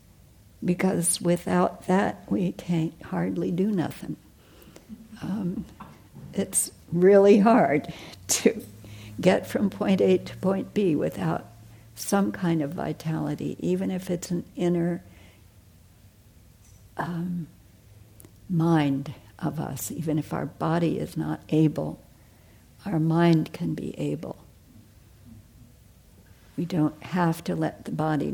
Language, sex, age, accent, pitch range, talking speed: English, female, 60-79, American, 105-175 Hz, 110 wpm